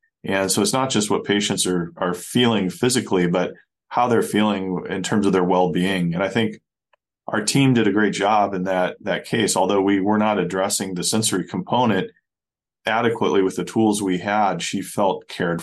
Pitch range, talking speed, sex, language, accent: 90-105 Hz, 190 wpm, male, English, American